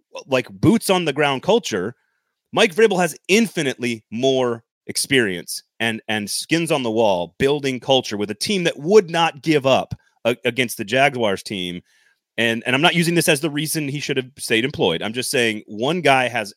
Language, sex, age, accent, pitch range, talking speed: English, male, 30-49, American, 120-165 Hz, 190 wpm